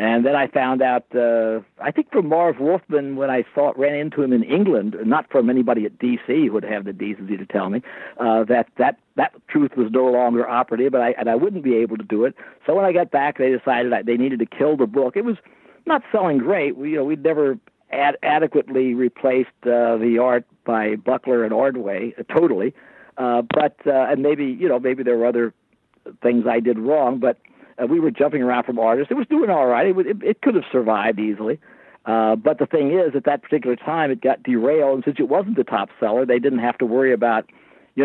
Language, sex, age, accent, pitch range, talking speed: English, male, 60-79, American, 120-145 Hz, 235 wpm